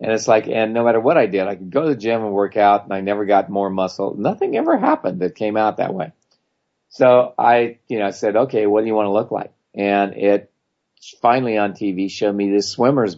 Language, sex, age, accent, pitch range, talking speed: English, male, 50-69, American, 95-115 Hz, 250 wpm